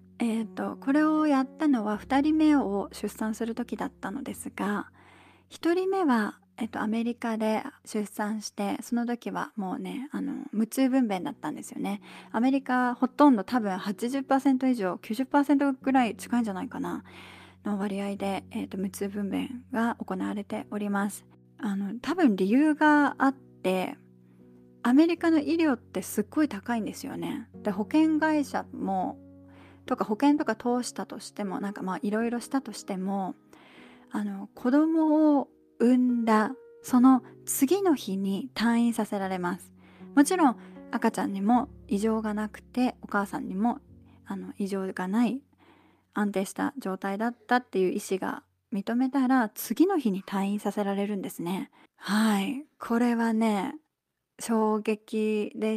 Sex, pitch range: female, 200-265 Hz